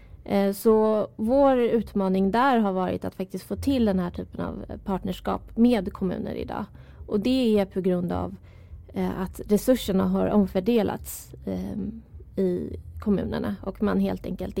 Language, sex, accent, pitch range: Swedish, female, native, 185-215 Hz